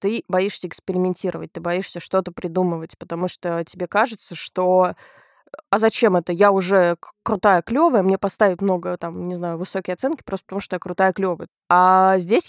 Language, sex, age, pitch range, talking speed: Russian, female, 20-39, 180-205 Hz, 165 wpm